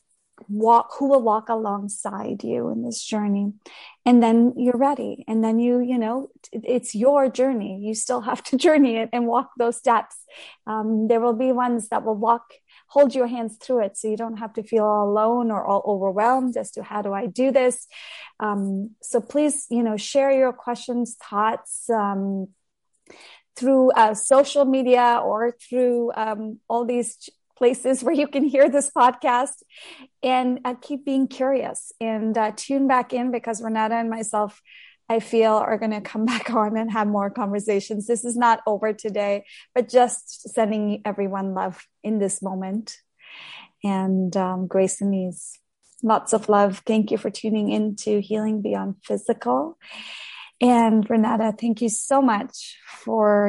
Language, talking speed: English, 170 wpm